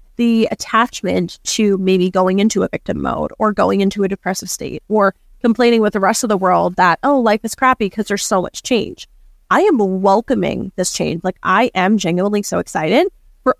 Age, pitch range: 20-39, 185-230 Hz